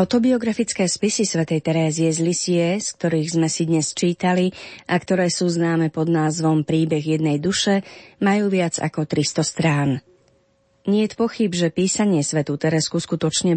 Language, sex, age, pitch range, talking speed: Slovak, female, 30-49, 160-200 Hz, 145 wpm